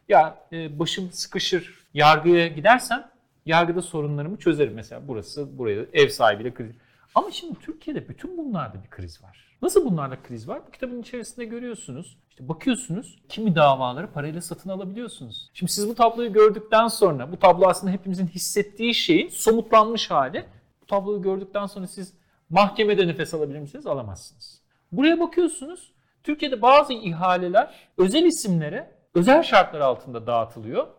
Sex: male